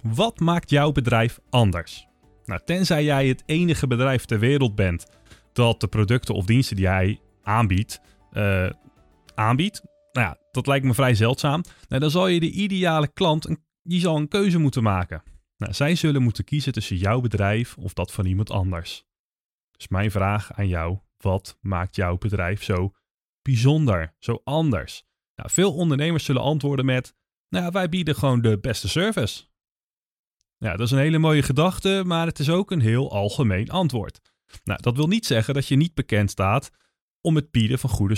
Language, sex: Dutch, male